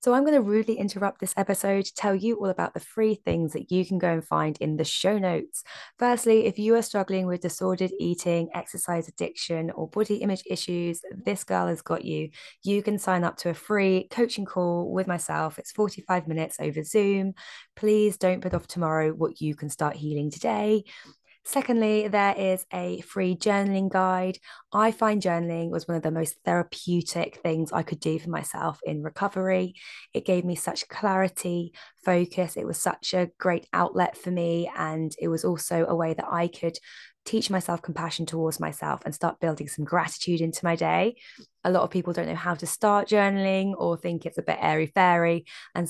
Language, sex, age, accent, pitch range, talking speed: English, female, 20-39, British, 165-195 Hz, 195 wpm